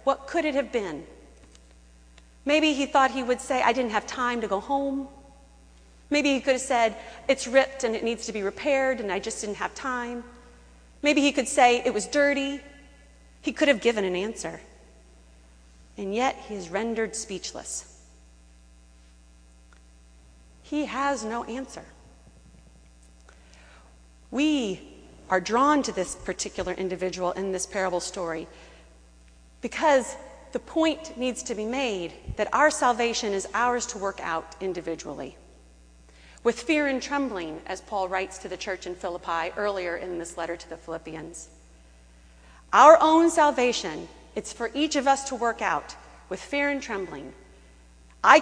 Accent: American